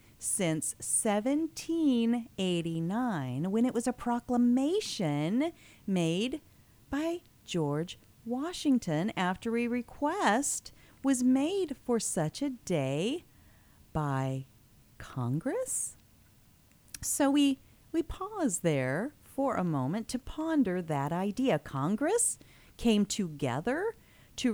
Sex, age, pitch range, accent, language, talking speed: female, 40-59, 155-265 Hz, American, English, 95 wpm